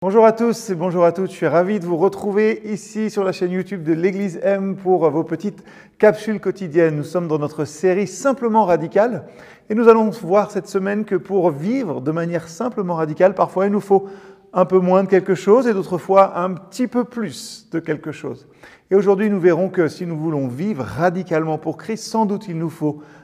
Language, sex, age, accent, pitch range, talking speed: French, male, 40-59, French, 160-215 Hz, 215 wpm